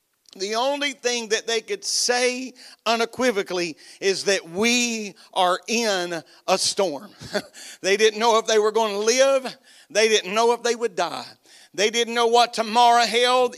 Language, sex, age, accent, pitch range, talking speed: English, male, 40-59, American, 190-235 Hz, 165 wpm